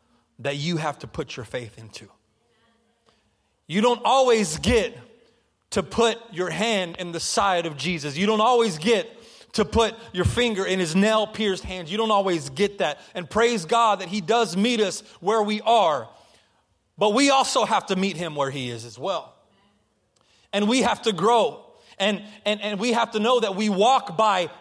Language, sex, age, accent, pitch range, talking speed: English, male, 30-49, American, 140-210 Hz, 190 wpm